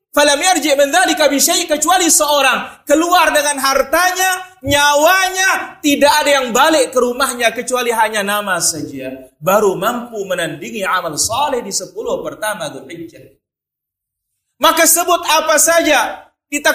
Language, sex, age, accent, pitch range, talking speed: Indonesian, male, 40-59, native, 195-320 Hz, 105 wpm